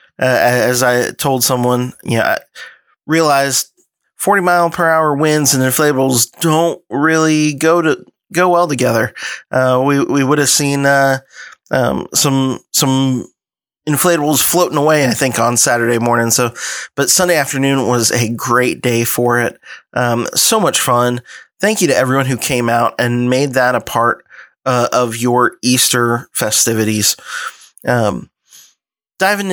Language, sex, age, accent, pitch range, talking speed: English, male, 20-39, American, 125-150 Hz, 150 wpm